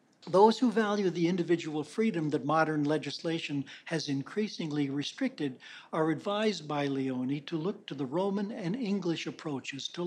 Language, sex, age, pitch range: English, male, 60-79, 145-185 Hz